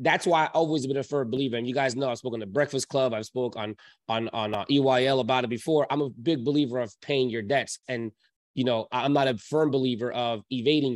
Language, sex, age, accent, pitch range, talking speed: English, male, 20-39, American, 125-150 Hz, 250 wpm